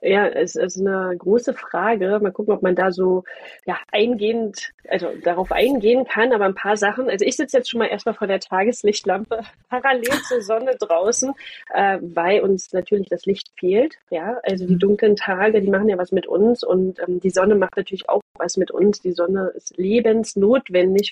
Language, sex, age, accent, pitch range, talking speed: German, female, 30-49, German, 185-230 Hz, 195 wpm